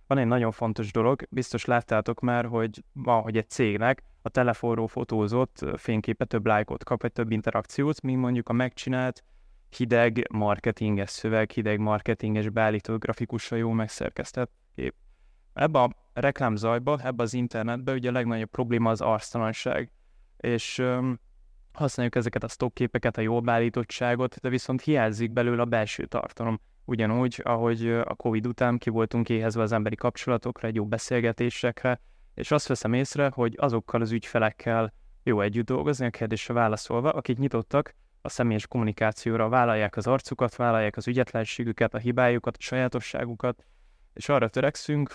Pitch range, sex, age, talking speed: 110-125 Hz, male, 20-39, 150 wpm